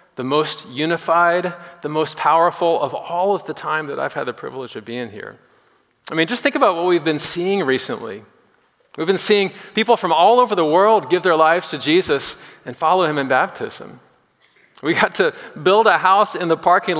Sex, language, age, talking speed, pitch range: male, English, 40-59, 200 wpm, 145-195 Hz